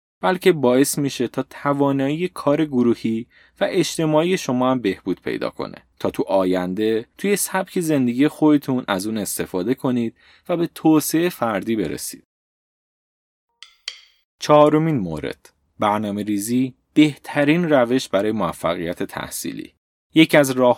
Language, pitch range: Persian, 110-145 Hz